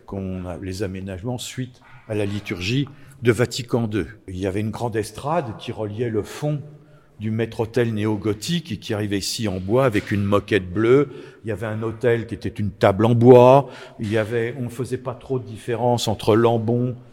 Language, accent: French, French